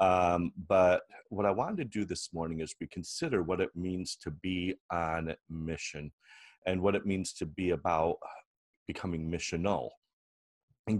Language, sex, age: English, male, 40-59